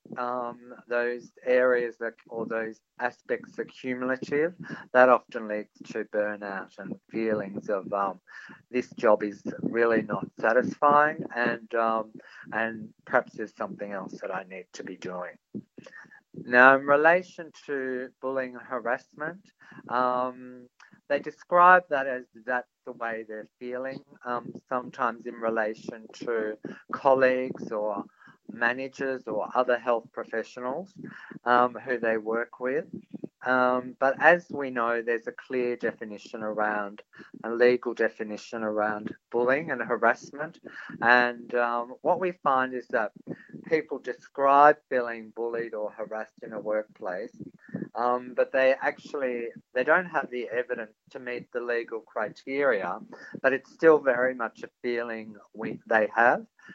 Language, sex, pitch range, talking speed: English, male, 115-135 Hz, 135 wpm